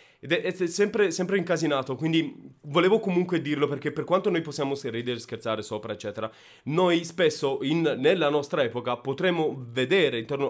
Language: Italian